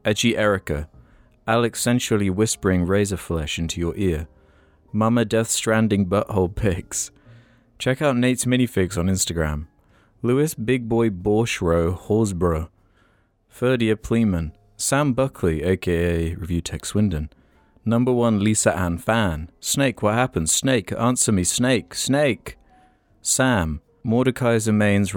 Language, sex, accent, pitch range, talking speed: English, male, British, 90-120 Hz, 120 wpm